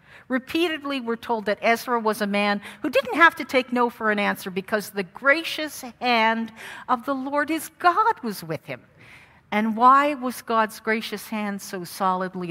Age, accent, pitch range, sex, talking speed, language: 50-69, American, 180-245 Hz, female, 175 wpm, English